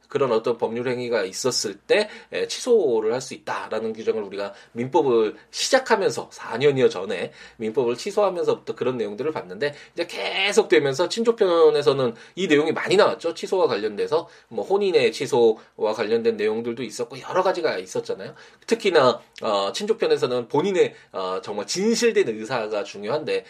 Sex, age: male, 20-39